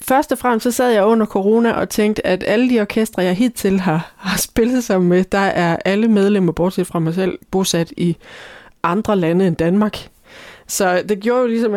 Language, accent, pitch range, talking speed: English, Danish, 170-210 Hz, 205 wpm